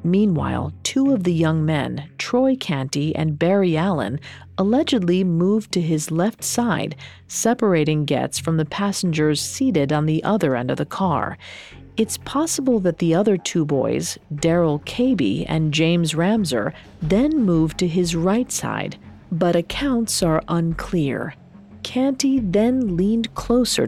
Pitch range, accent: 160-225 Hz, American